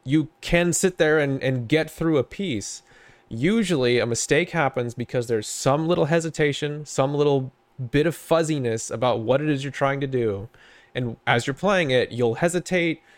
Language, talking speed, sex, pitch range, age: English, 180 wpm, male, 125-155 Hz, 30-49